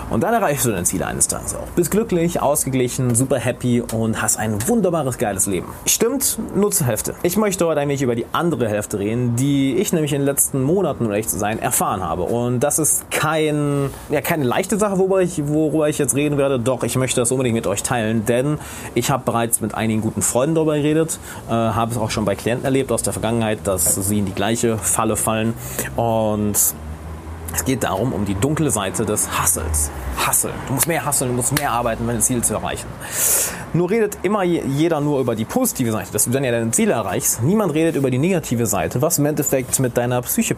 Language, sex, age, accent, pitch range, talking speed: German, male, 30-49, German, 110-150 Hz, 220 wpm